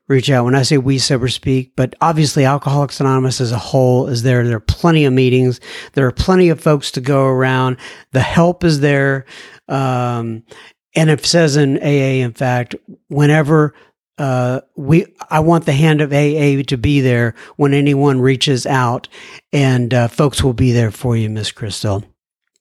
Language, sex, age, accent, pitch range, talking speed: English, male, 60-79, American, 130-205 Hz, 180 wpm